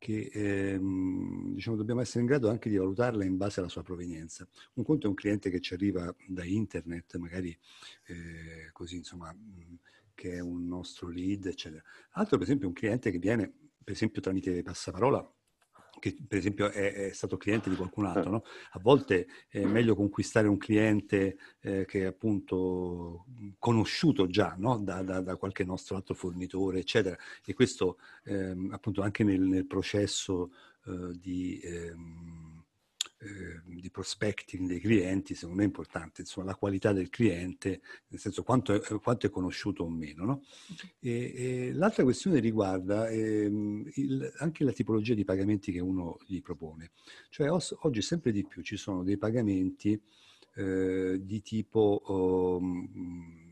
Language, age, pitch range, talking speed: Italian, 50-69, 90-105 Hz, 165 wpm